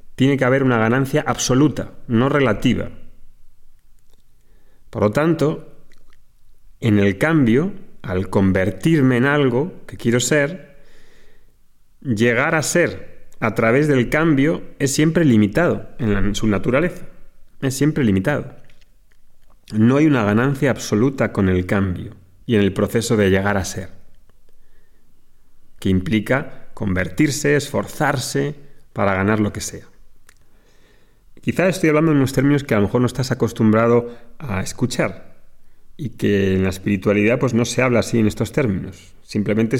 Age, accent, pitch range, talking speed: 30-49, Spanish, 105-140 Hz, 140 wpm